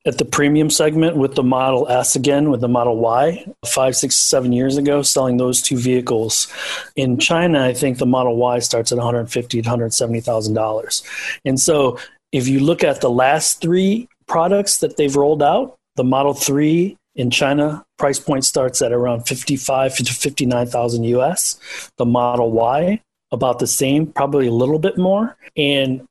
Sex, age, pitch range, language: male, 40-59, 125-150 Hz, Chinese